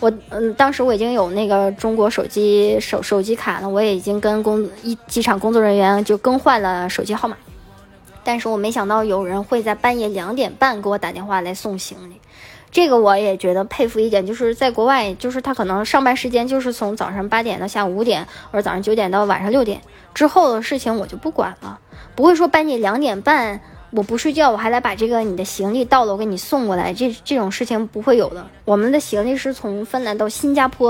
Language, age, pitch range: Chinese, 10-29, 195-245 Hz